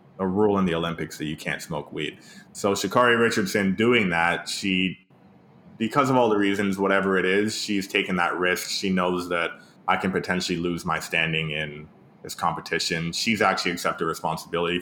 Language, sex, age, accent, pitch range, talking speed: English, male, 20-39, American, 85-105 Hz, 180 wpm